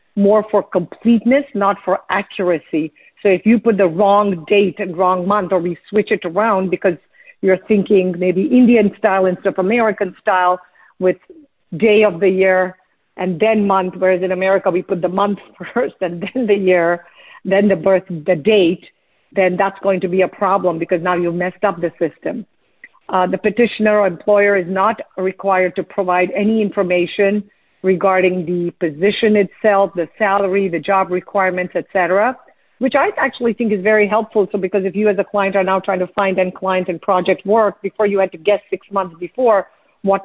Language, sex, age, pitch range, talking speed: English, female, 50-69, 185-210 Hz, 185 wpm